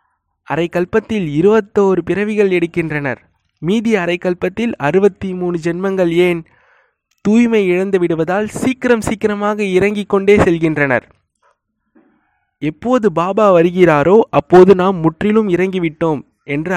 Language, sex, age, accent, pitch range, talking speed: Tamil, male, 20-39, native, 155-205 Hz, 95 wpm